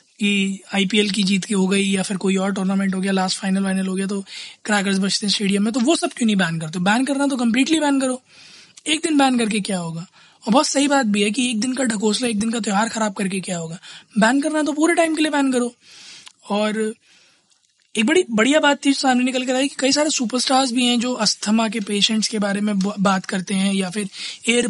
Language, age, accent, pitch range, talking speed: Hindi, 20-39, native, 200-260 Hz, 240 wpm